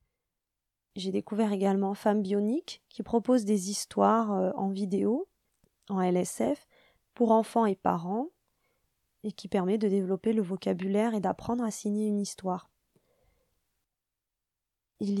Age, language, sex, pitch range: 20-39, French, female, 200-230 Hz